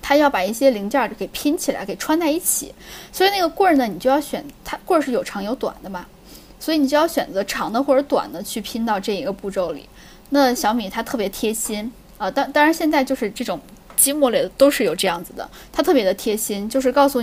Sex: female